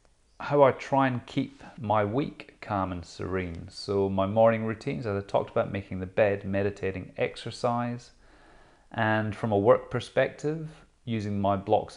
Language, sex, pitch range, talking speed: English, male, 100-120 Hz, 155 wpm